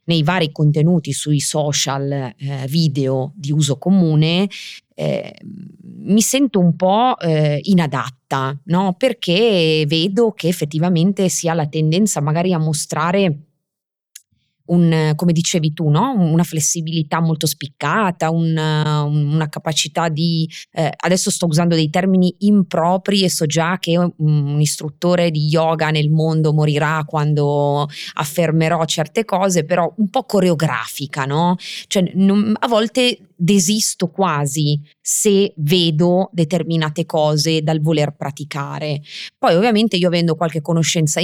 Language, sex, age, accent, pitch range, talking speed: Italian, female, 20-39, native, 150-185 Hz, 130 wpm